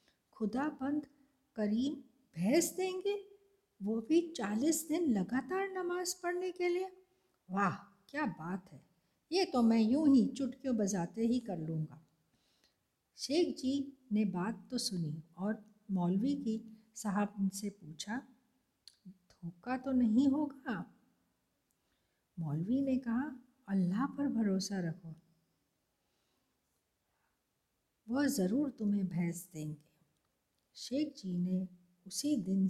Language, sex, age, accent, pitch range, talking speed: Hindi, female, 60-79, native, 180-265 Hz, 110 wpm